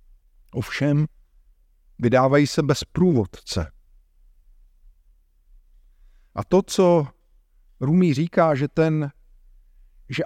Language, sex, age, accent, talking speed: Czech, male, 50-69, native, 70 wpm